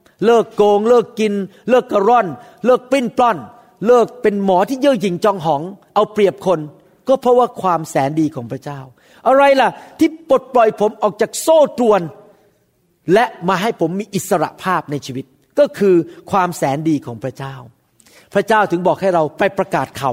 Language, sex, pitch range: Thai, male, 160-240 Hz